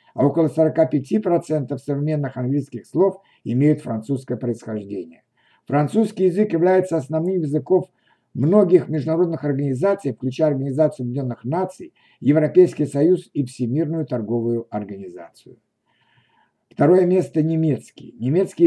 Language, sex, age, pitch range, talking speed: Russian, male, 60-79, 130-170 Hz, 105 wpm